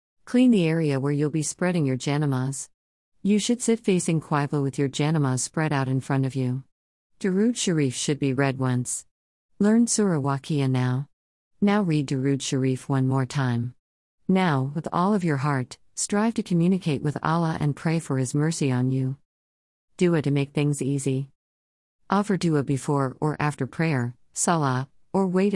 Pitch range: 130-170 Hz